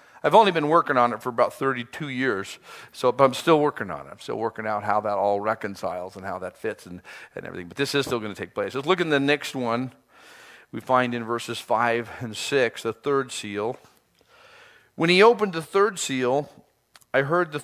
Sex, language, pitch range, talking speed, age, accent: male, English, 110-145 Hz, 220 wpm, 50-69, American